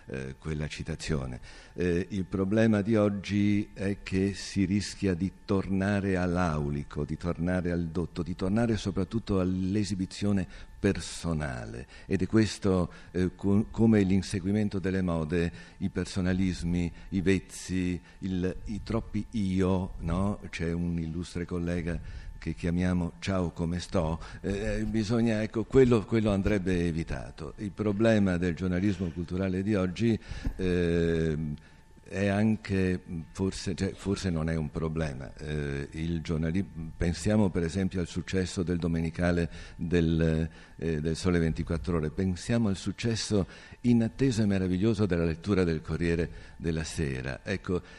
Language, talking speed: Italian, 125 wpm